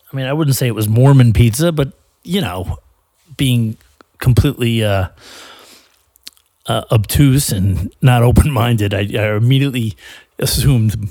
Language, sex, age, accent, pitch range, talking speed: English, male, 40-59, American, 95-125 Hz, 130 wpm